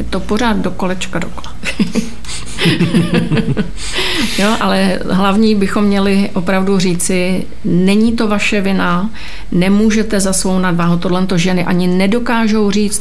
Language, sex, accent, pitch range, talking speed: Czech, female, native, 170-205 Hz, 115 wpm